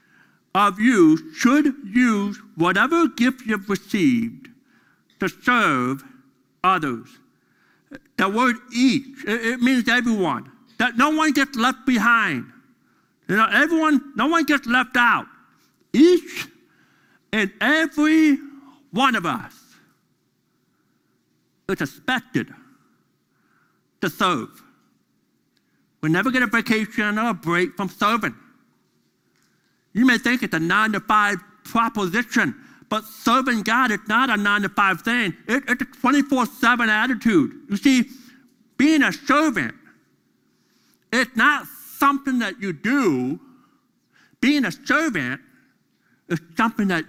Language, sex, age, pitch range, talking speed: English, male, 60-79, 215-275 Hz, 110 wpm